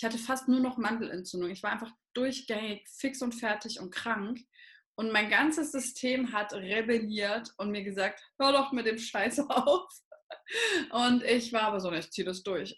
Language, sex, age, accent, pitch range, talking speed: German, female, 20-39, German, 205-250 Hz, 185 wpm